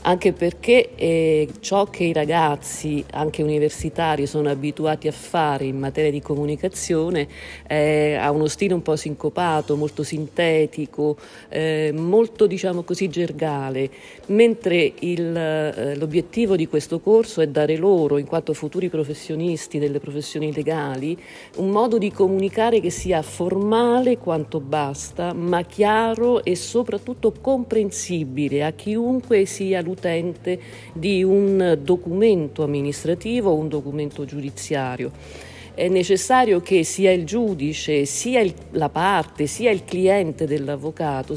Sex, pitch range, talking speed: female, 150-195 Hz, 125 wpm